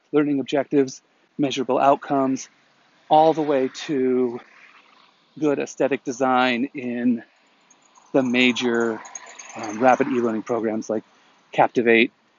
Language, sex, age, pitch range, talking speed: English, male, 40-59, 120-150 Hz, 95 wpm